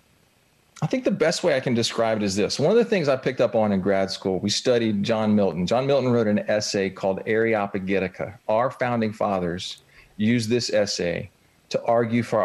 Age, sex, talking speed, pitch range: 40-59, male, 200 wpm, 105-155 Hz